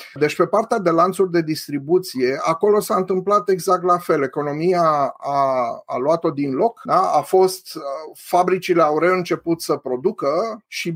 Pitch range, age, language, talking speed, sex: 135-175 Hz, 30-49, Romanian, 155 wpm, male